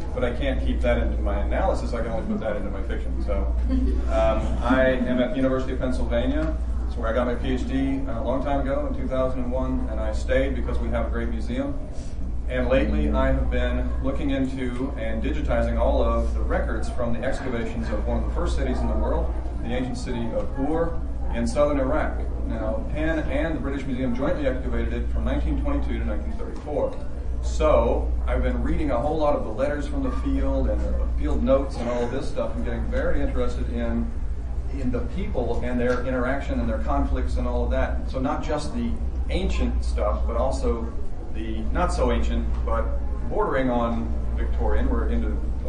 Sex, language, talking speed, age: male, English, 200 wpm, 40-59